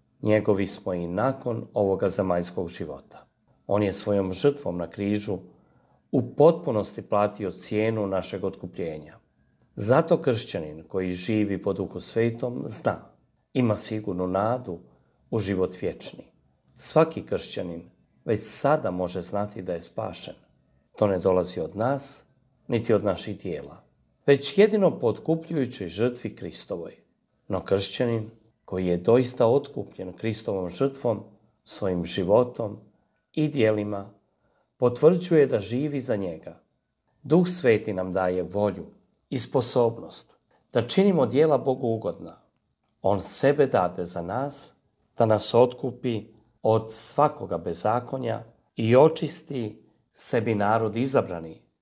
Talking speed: 115 wpm